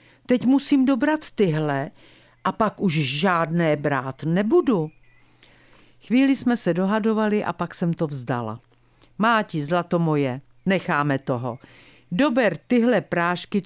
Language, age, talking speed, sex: Czech, 50-69, 120 wpm, female